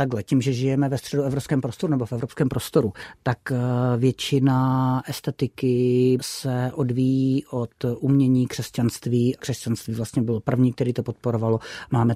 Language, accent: Czech, native